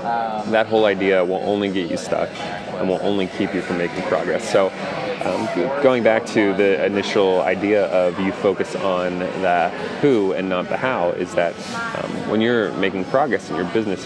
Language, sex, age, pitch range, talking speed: English, male, 30-49, 90-100 Hz, 190 wpm